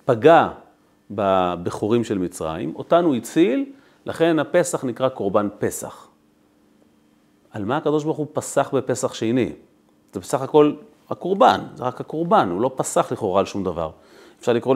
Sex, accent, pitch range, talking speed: male, native, 110-160 Hz, 140 wpm